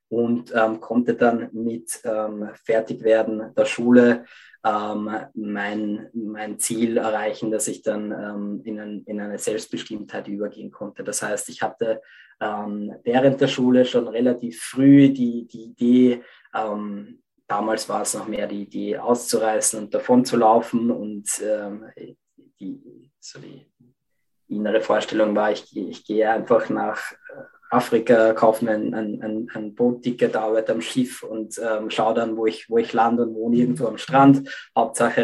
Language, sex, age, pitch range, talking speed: German, male, 20-39, 105-120 Hz, 150 wpm